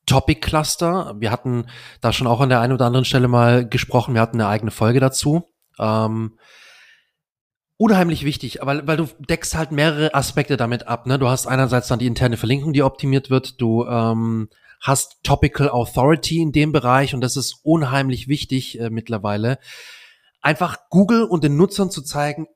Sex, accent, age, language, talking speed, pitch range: male, German, 30-49, German, 175 wpm, 120-155 Hz